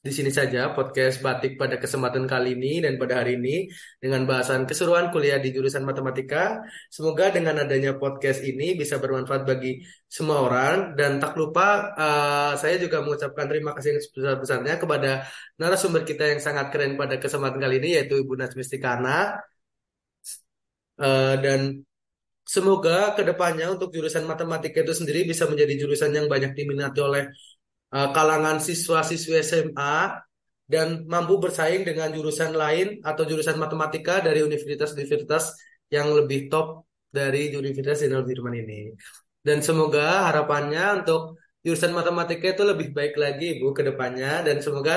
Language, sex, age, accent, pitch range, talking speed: Indonesian, male, 20-39, native, 140-165 Hz, 140 wpm